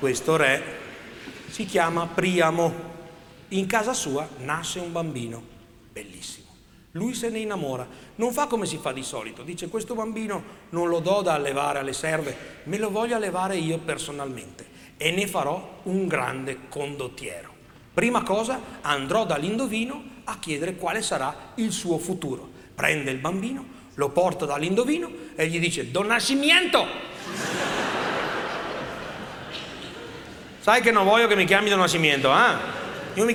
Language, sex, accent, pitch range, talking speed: Italian, male, native, 145-220 Hz, 140 wpm